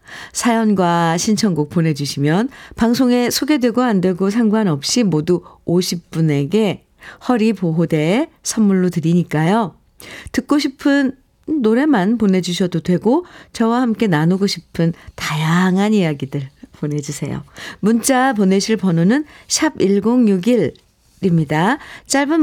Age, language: 50-69, Korean